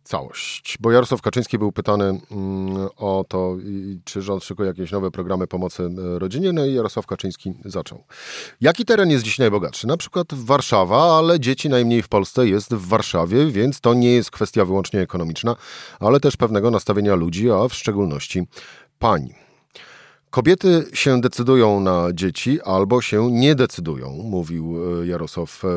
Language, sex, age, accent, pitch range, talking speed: Polish, male, 40-59, native, 95-120 Hz, 145 wpm